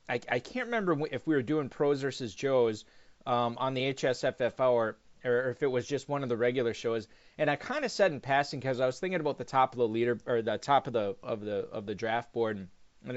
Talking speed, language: 250 wpm, English